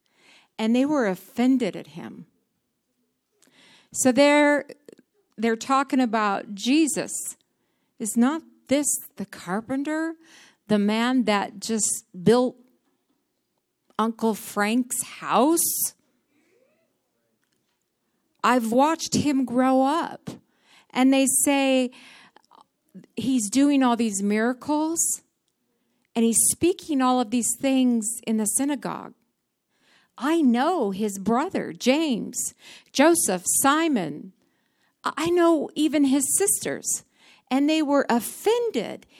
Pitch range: 215-290 Hz